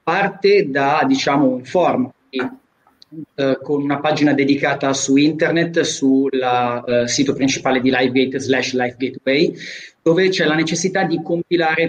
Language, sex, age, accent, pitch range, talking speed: Italian, male, 30-49, native, 135-170 Hz, 130 wpm